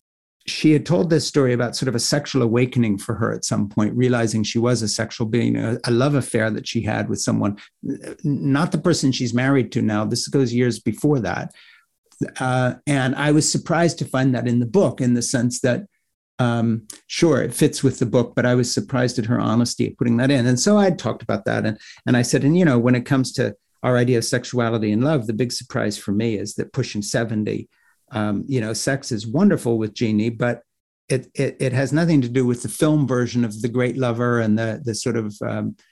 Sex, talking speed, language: male, 230 wpm, English